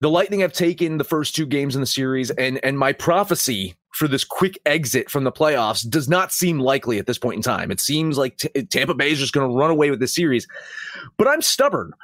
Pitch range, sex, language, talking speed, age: 140-205 Hz, male, English, 245 wpm, 30-49